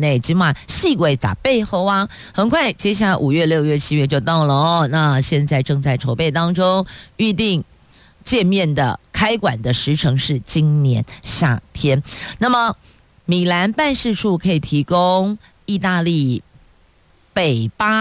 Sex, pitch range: female, 135-185 Hz